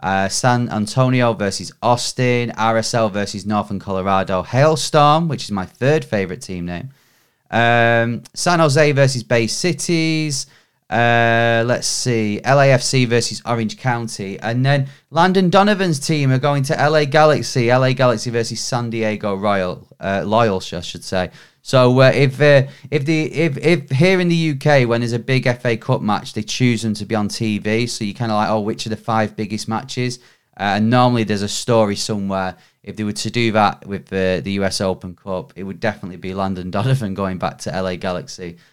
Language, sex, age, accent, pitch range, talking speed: English, male, 30-49, British, 105-145 Hz, 185 wpm